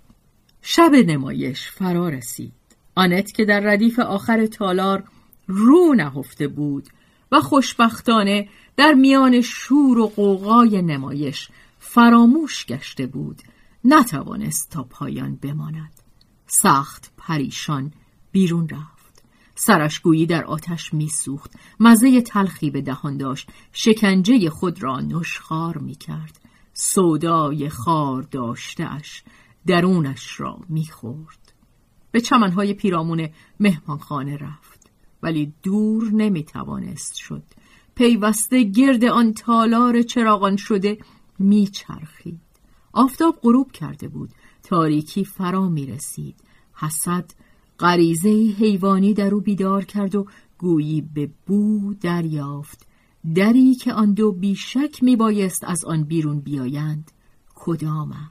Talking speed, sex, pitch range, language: 105 wpm, female, 150-220 Hz, Persian